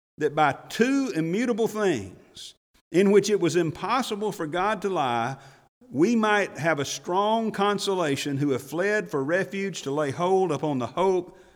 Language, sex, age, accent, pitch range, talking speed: English, male, 50-69, American, 115-160 Hz, 160 wpm